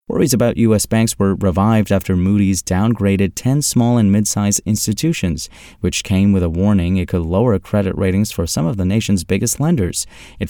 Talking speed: 185 wpm